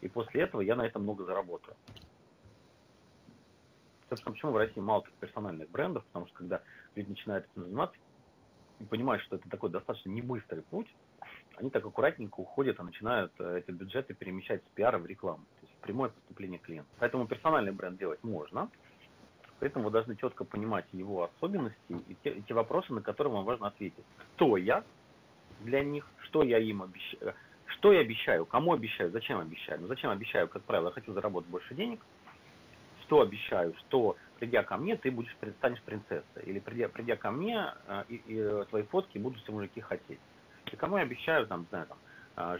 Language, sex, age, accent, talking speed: Russian, male, 40-59, native, 180 wpm